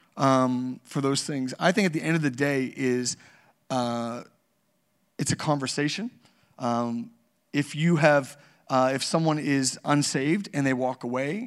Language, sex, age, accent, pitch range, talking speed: English, male, 30-49, American, 130-150 Hz, 155 wpm